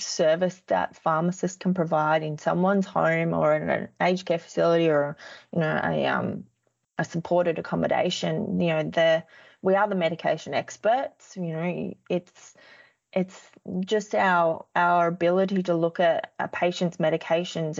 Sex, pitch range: female, 165-195 Hz